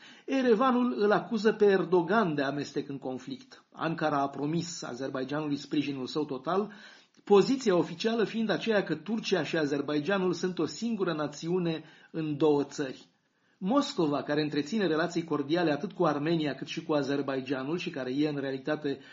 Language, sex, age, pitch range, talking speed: Romanian, male, 30-49, 145-185 Hz, 150 wpm